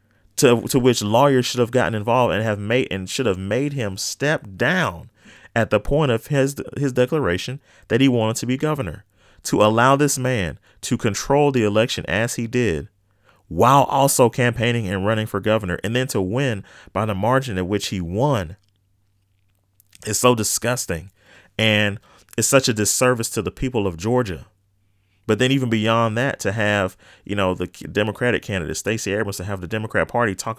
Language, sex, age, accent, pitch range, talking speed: English, male, 30-49, American, 100-125 Hz, 180 wpm